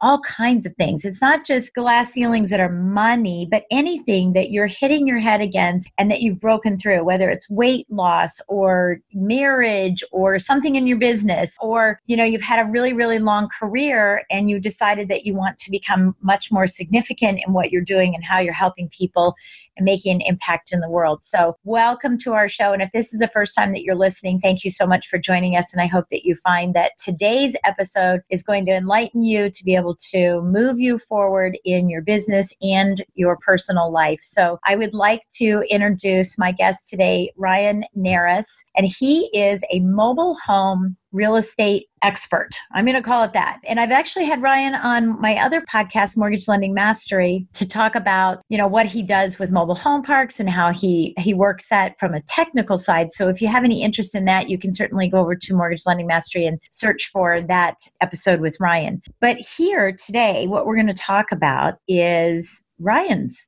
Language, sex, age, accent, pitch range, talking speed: English, female, 40-59, American, 185-225 Hz, 205 wpm